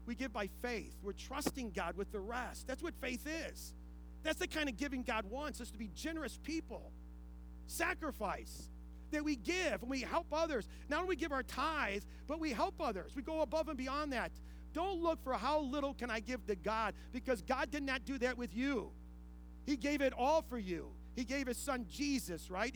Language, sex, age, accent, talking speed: English, male, 40-59, American, 210 wpm